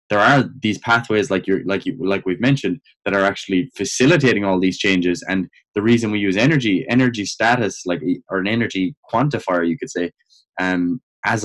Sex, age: male, 10-29